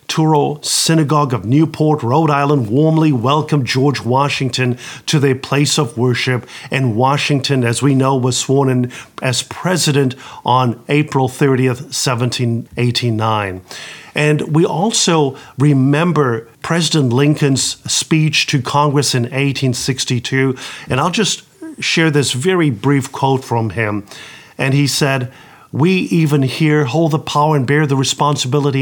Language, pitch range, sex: English, 125-155 Hz, male